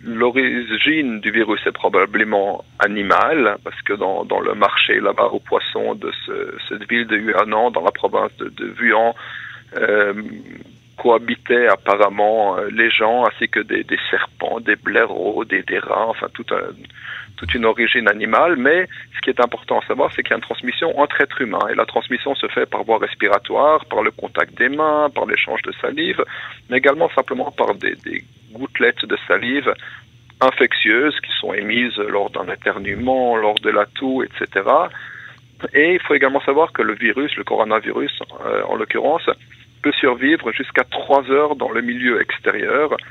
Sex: male